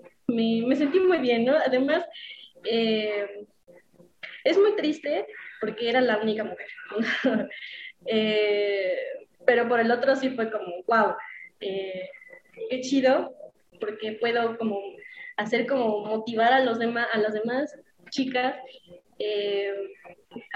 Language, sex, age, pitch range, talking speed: Spanish, female, 20-39, 215-265 Hz, 125 wpm